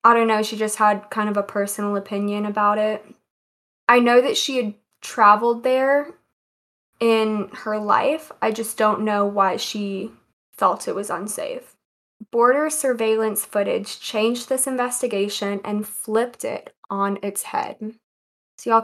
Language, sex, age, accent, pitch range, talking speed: English, female, 20-39, American, 205-230 Hz, 150 wpm